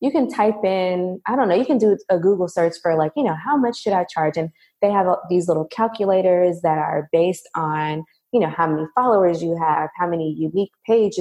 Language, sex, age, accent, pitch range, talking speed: English, female, 20-39, American, 165-210 Hz, 230 wpm